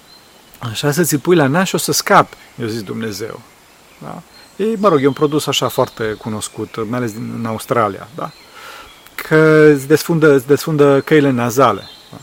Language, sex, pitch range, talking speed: Romanian, male, 115-150 Hz, 170 wpm